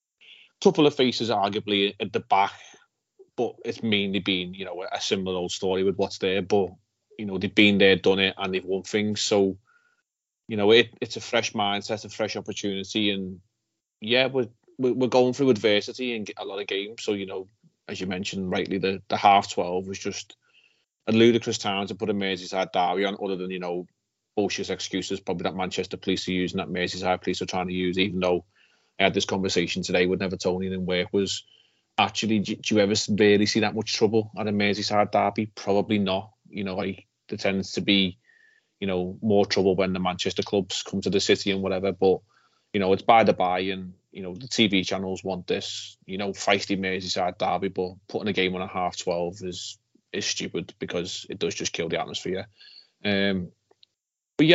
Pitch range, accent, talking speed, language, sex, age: 95-110 Hz, British, 200 wpm, English, male, 30-49